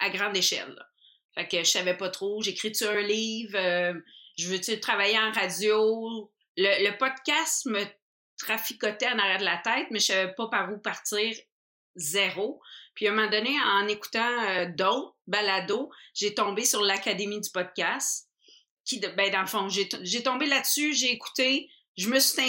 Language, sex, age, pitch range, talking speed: French, female, 30-49, 190-230 Hz, 185 wpm